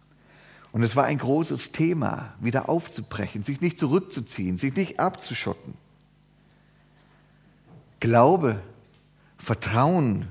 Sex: male